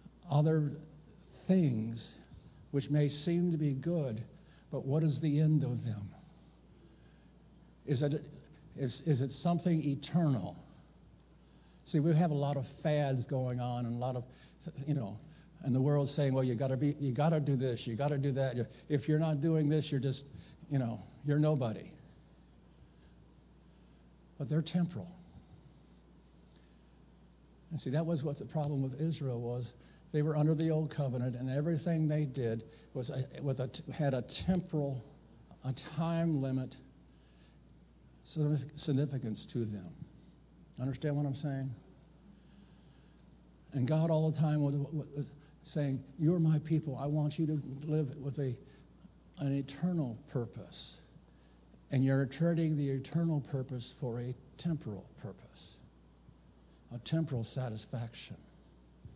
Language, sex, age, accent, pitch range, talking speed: English, male, 60-79, American, 130-155 Hz, 140 wpm